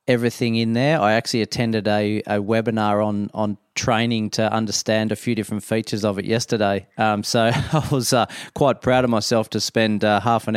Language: English